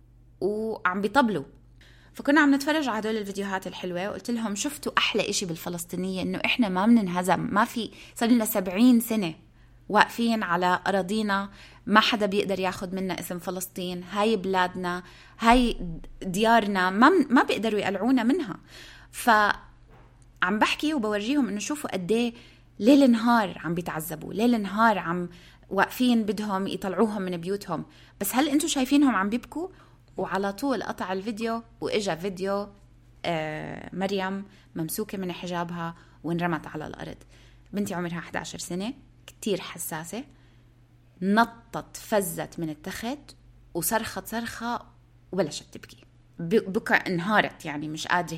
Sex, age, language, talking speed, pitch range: female, 20-39, Arabic, 130 wpm, 170-225 Hz